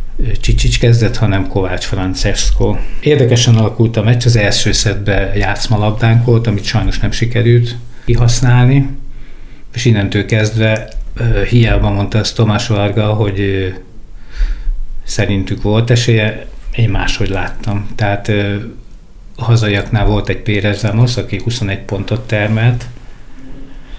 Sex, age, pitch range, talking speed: male, 60-79, 100-115 Hz, 115 wpm